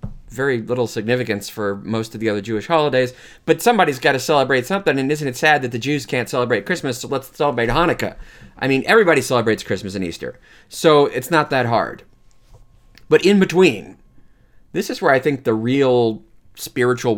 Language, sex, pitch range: English, male, 115-150 Hz